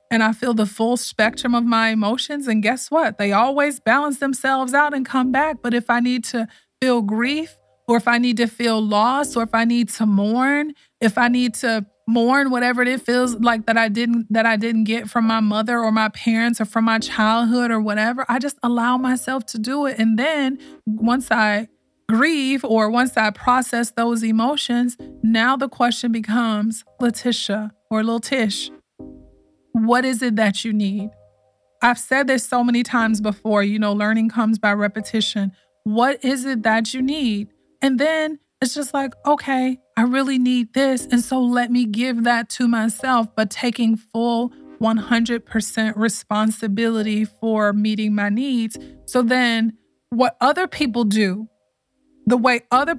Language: English